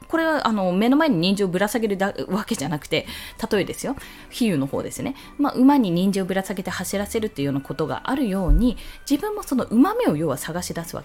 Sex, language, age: female, Japanese, 20-39